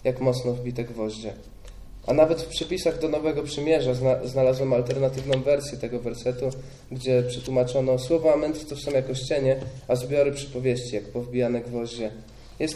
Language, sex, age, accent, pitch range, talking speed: Polish, male, 20-39, native, 120-145 Hz, 145 wpm